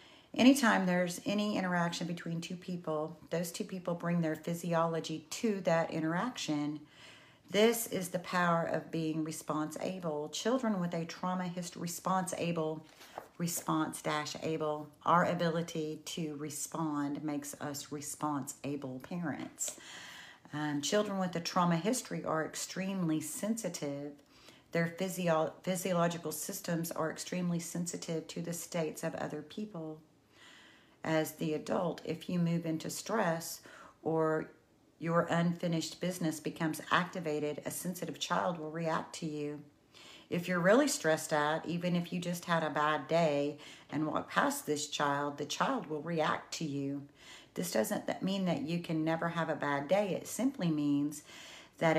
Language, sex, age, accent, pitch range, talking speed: English, female, 40-59, American, 155-180 Hz, 135 wpm